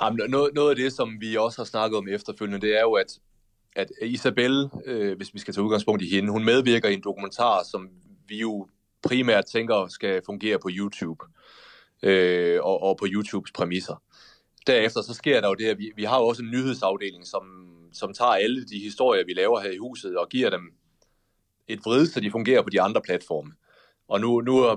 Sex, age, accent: male, 30-49, native